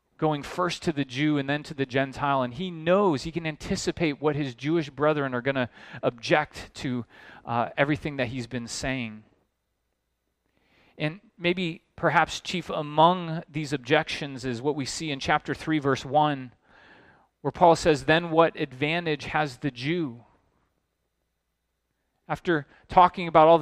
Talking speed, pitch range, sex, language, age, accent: 150 wpm, 135-180 Hz, male, English, 30-49, American